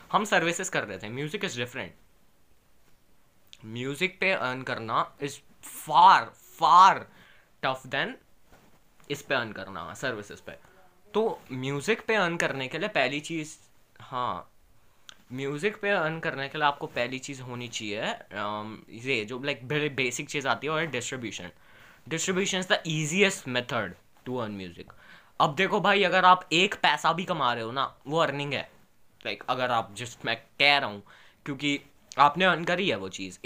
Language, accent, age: Hindi, native, 20-39